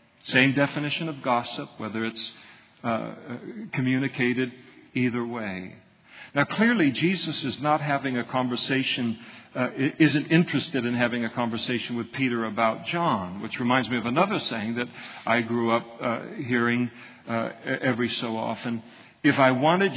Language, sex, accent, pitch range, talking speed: English, male, American, 120-155 Hz, 145 wpm